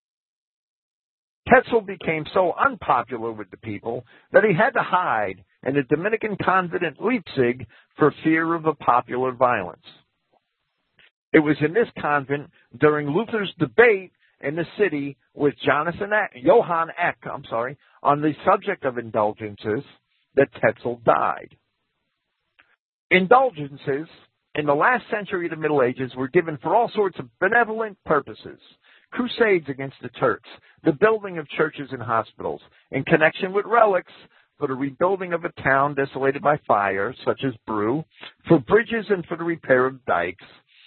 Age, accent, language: 50-69, American, English